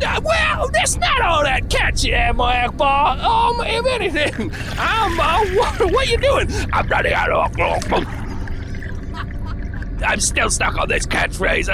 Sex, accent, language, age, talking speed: male, American, English, 30-49, 150 wpm